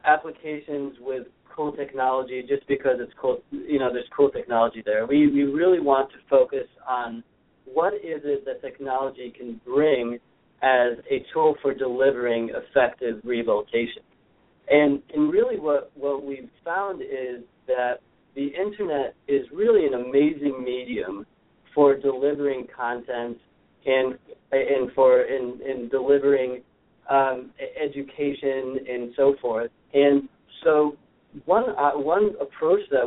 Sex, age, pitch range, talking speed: male, 40-59, 130-185 Hz, 130 wpm